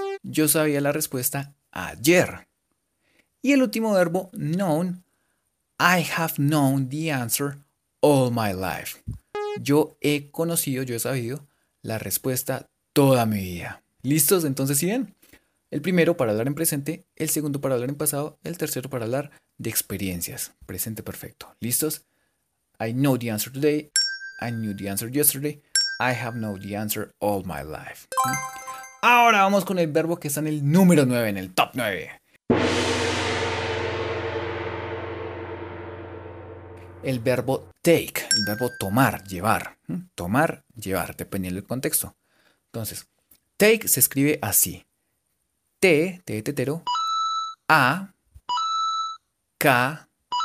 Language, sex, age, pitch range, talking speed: Spanish, male, 30-49, 110-170 Hz, 135 wpm